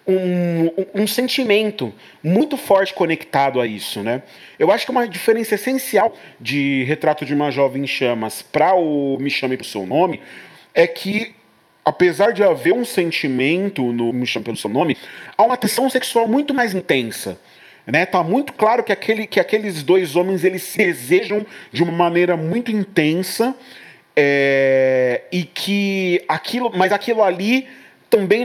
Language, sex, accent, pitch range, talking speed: Portuguese, male, Brazilian, 150-210 Hz, 160 wpm